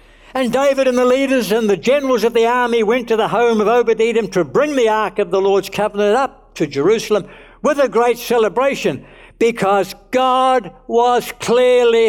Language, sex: English, male